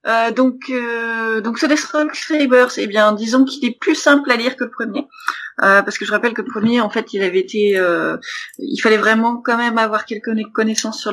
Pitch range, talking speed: 195-235 Hz, 225 wpm